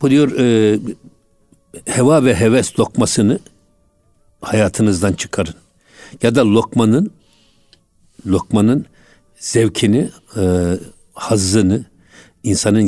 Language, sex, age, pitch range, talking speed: Turkish, male, 60-79, 100-125 Hz, 80 wpm